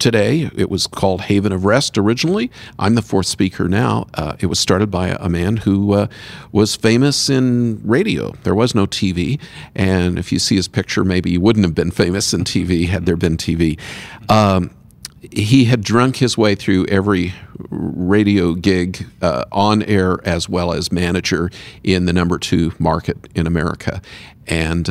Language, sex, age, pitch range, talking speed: English, male, 50-69, 85-110 Hz, 180 wpm